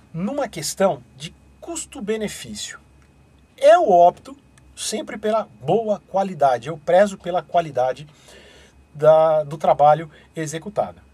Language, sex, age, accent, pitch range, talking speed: Portuguese, male, 40-59, Brazilian, 155-205 Hz, 90 wpm